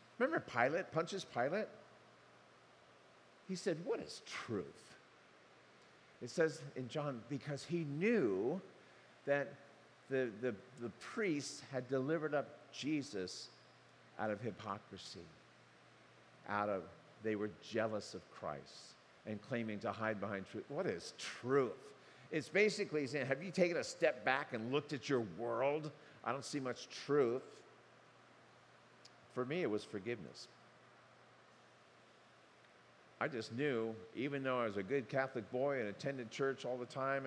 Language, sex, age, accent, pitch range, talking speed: English, male, 50-69, American, 120-175 Hz, 135 wpm